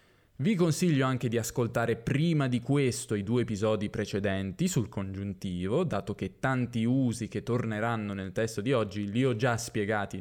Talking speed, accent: 165 wpm, native